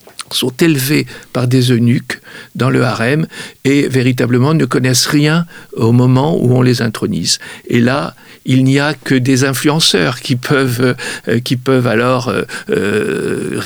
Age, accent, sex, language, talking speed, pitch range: 50-69, French, male, French, 155 wpm, 120-145 Hz